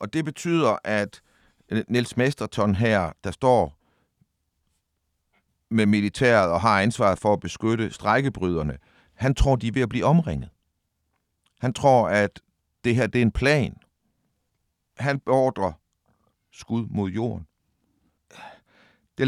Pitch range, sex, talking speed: 95-125 Hz, male, 130 wpm